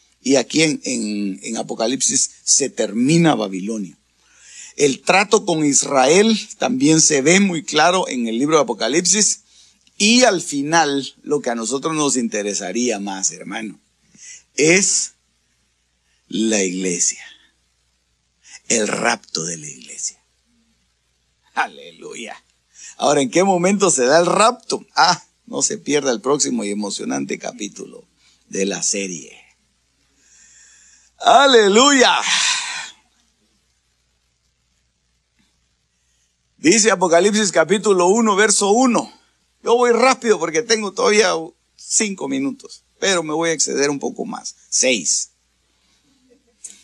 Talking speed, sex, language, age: 110 wpm, male, Spanish, 50-69